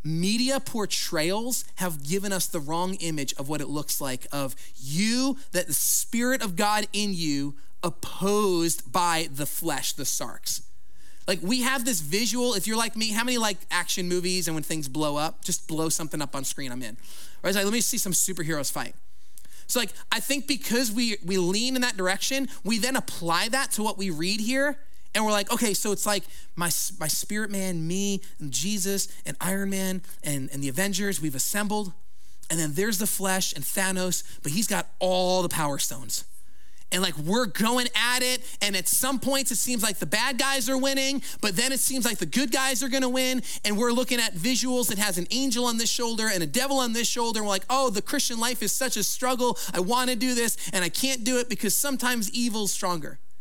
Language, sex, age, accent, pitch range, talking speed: English, male, 30-49, American, 165-240 Hz, 215 wpm